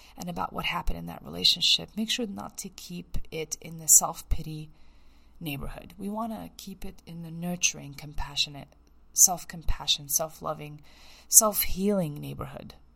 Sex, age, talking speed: female, 30-49, 140 wpm